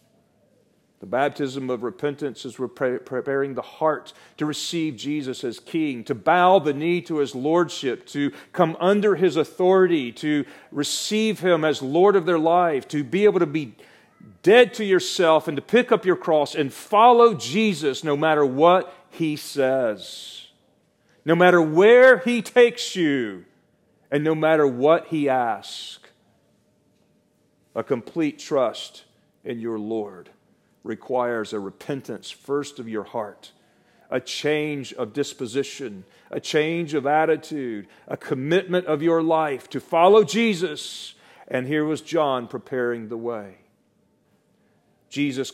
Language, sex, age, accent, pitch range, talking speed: English, male, 40-59, American, 135-170 Hz, 140 wpm